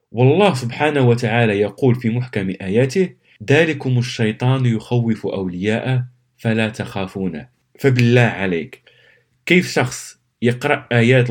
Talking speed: 100 wpm